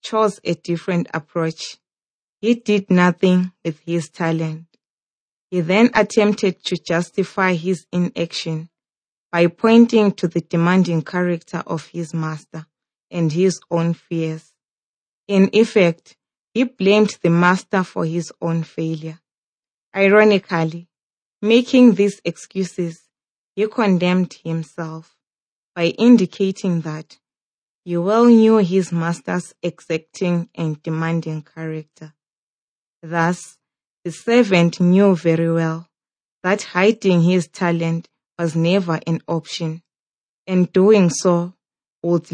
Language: English